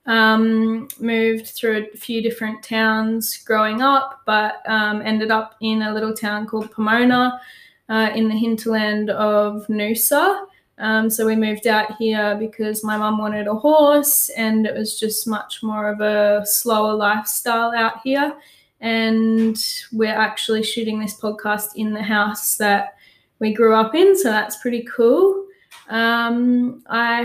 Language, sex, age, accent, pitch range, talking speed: English, female, 10-29, Australian, 215-240 Hz, 150 wpm